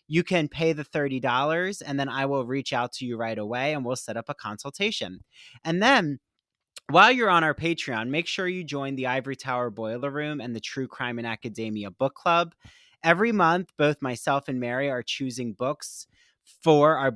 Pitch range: 125-165 Hz